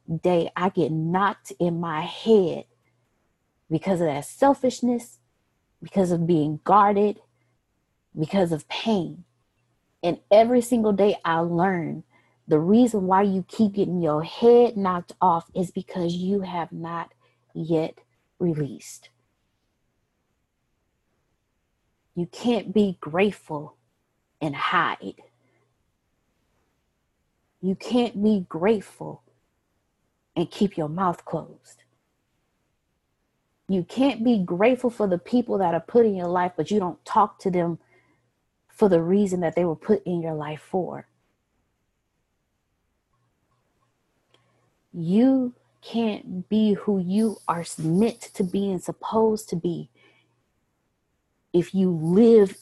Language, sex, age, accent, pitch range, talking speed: English, female, 30-49, American, 165-210 Hz, 115 wpm